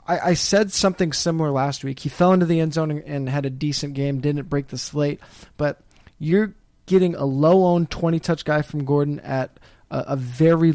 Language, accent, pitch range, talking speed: English, American, 140-165 Hz, 195 wpm